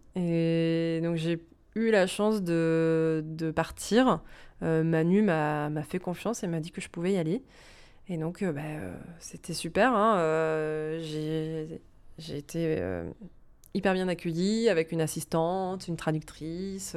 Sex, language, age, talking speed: female, French, 20-39, 155 wpm